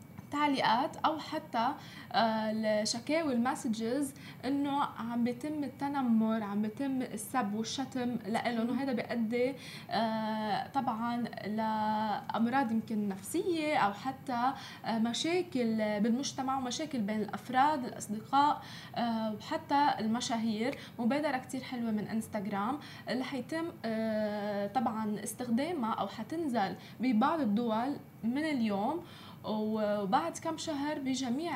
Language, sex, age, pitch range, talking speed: Arabic, female, 20-39, 220-270 Hz, 105 wpm